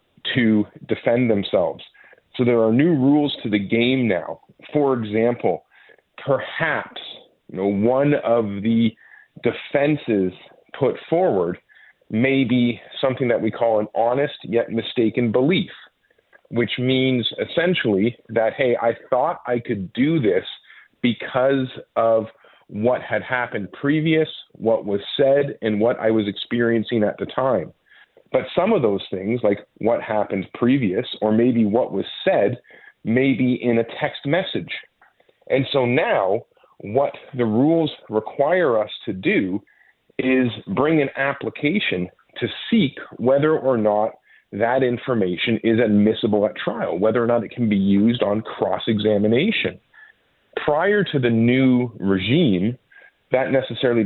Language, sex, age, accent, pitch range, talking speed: English, male, 40-59, American, 110-135 Hz, 135 wpm